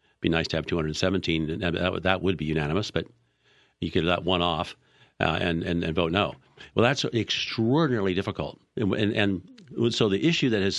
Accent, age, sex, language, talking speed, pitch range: American, 50-69, male, English, 200 wpm, 85-105 Hz